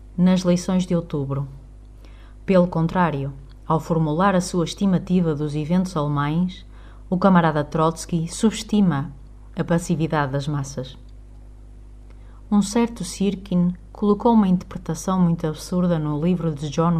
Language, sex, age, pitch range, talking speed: Portuguese, female, 20-39, 140-185 Hz, 120 wpm